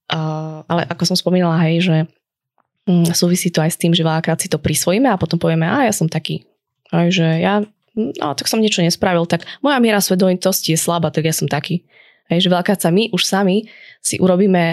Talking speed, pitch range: 210 wpm, 155-175 Hz